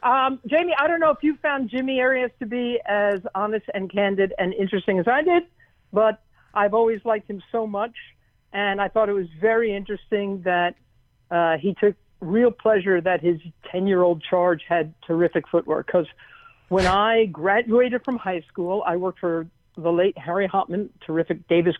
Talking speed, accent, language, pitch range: 180 wpm, American, English, 175-215 Hz